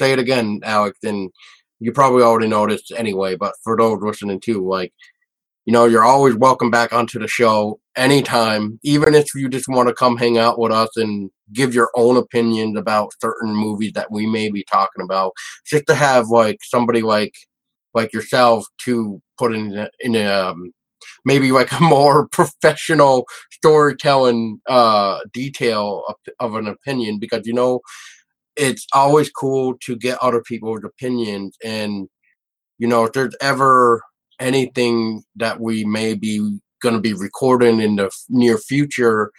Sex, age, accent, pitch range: male, 30-49, American, 105-125 Hz